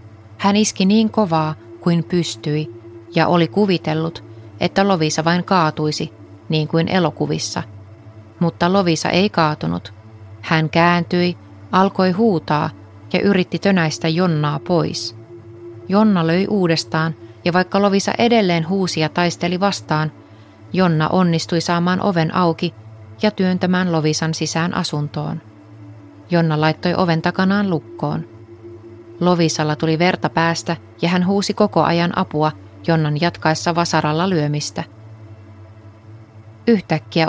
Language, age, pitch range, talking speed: Finnish, 30-49, 115-175 Hz, 115 wpm